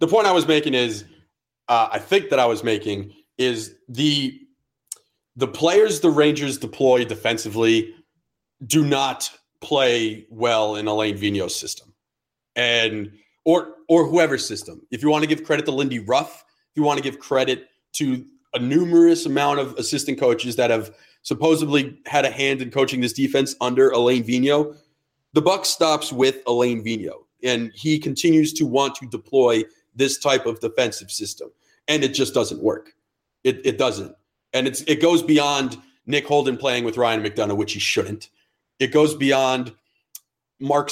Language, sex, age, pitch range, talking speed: English, male, 30-49, 125-170 Hz, 165 wpm